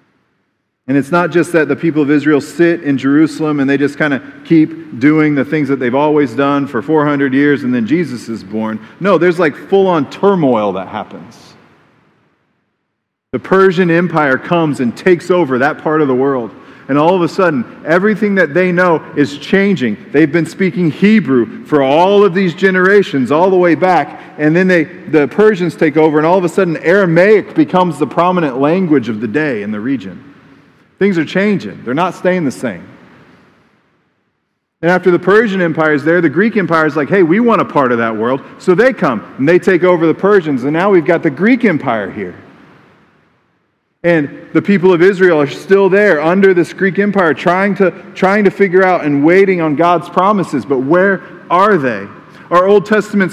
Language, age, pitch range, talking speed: English, 40-59, 150-195 Hz, 195 wpm